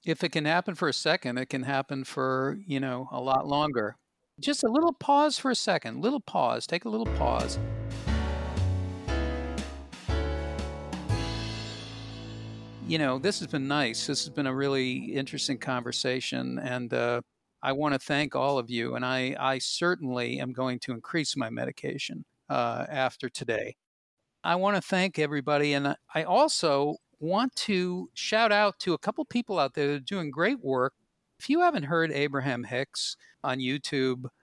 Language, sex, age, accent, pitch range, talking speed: English, male, 50-69, American, 125-155 Hz, 160 wpm